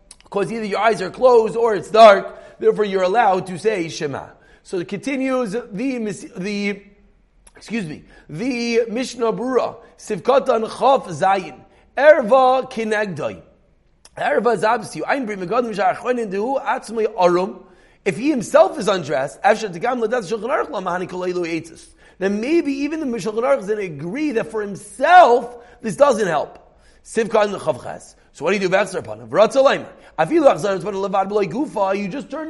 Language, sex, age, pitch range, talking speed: English, male, 40-59, 195-265 Hz, 135 wpm